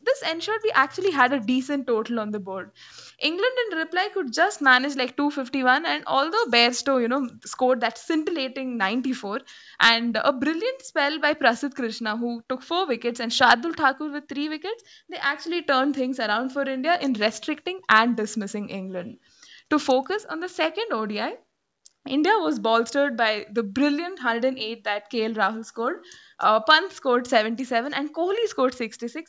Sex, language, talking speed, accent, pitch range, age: female, English, 170 wpm, Indian, 235-330 Hz, 10-29